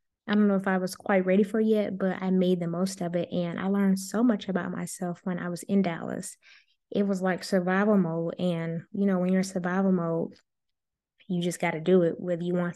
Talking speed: 245 wpm